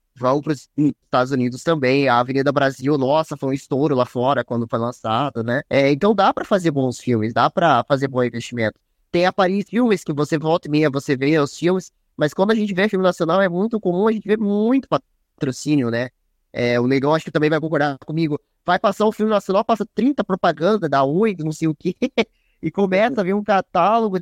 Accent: Brazilian